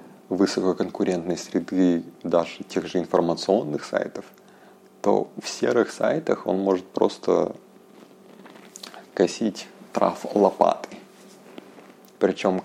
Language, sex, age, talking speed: Russian, male, 30-49, 85 wpm